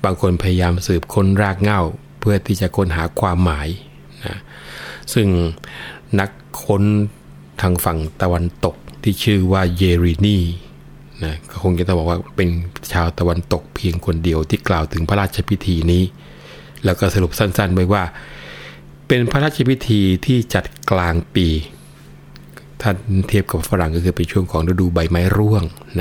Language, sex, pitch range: Thai, male, 85-105 Hz